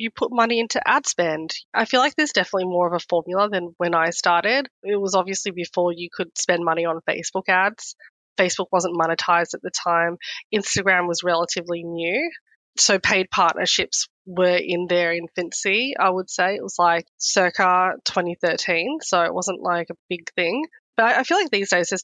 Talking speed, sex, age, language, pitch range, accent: 190 wpm, female, 20-39, English, 175-205 Hz, Australian